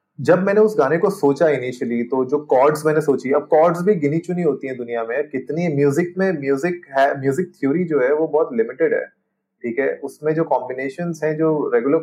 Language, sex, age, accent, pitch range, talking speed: Hindi, male, 30-49, native, 135-195 Hz, 210 wpm